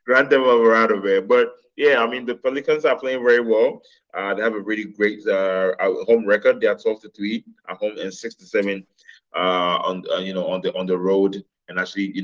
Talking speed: 225 wpm